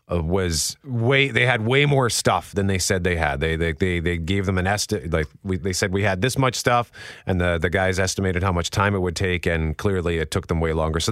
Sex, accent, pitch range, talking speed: male, American, 95-120 Hz, 260 wpm